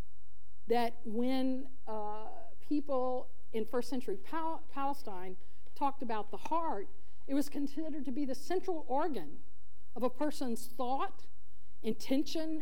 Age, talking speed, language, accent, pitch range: 50-69, 120 wpm, English, American, 225-305 Hz